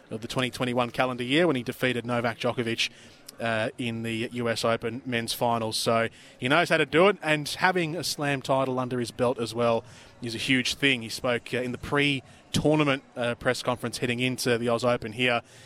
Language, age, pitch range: English, 20-39, 120-150 Hz